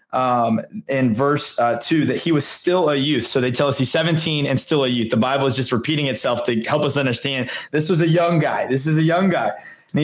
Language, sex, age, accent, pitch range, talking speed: English, male, 20-39, American, 125-160 Hz, 255 wpm